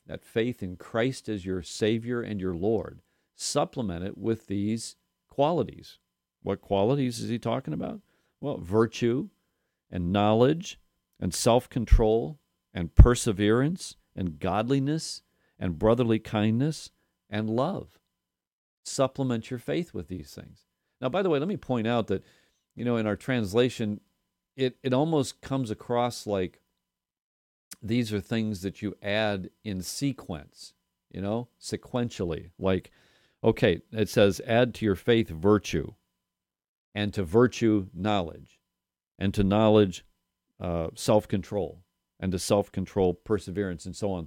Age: 50-69